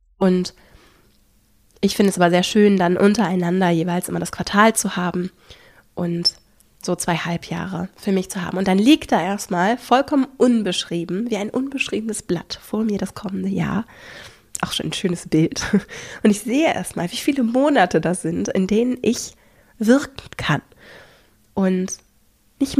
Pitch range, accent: 180-215 Hz, German